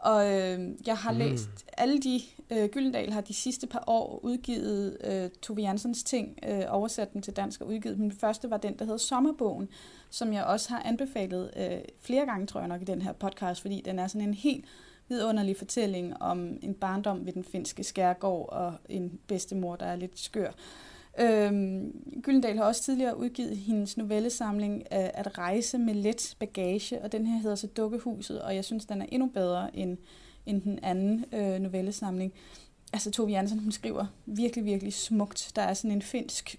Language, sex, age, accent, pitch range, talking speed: Danish, female, 20-39, native, 195-230 Hz, 185 wpm